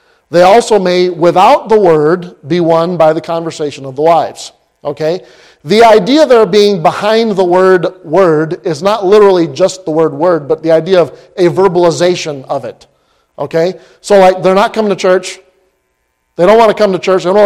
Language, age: English, 40-59